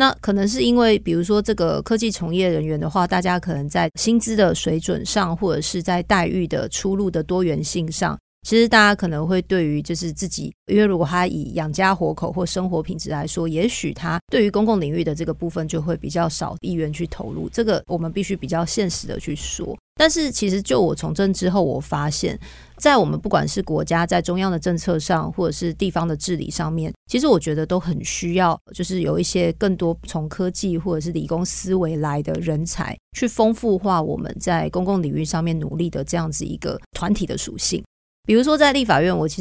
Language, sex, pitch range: Chinese, female, 165-195 Hz